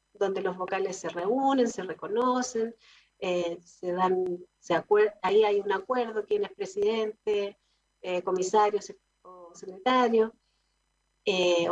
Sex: female